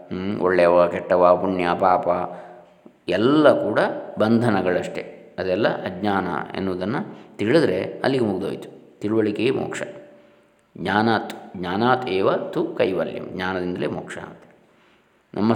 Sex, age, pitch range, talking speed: male, 20-39, 100-125 Hz, 100 wpm